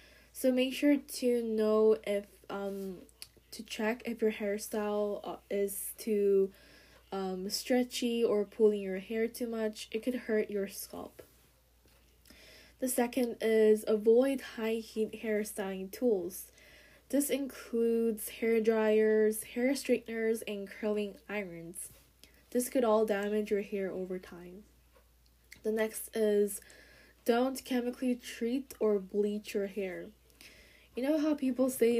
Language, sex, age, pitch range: Korean, female, 10-29, 205-235 Hz